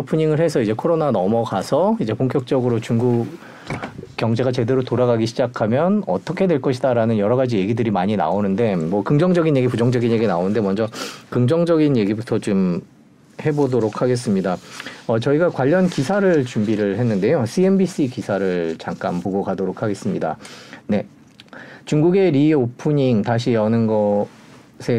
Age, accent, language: 40-59, native, Korean